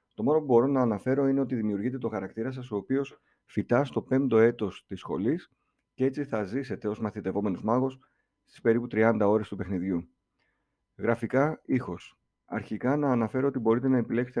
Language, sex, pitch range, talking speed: Greek, male, 105-130 Hz, 175 wpm